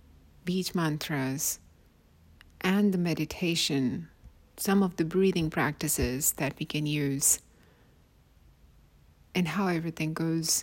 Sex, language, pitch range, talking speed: female, English, 120-185 Hz, 100 wpm